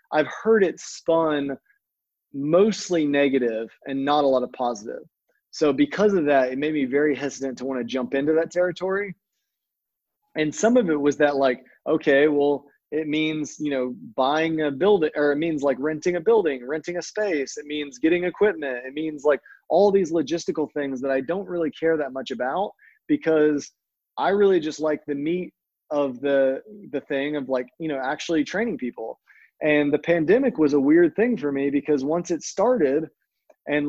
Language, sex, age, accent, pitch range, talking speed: English, male, 20-39, American, 140-175 Hz, 185 wpm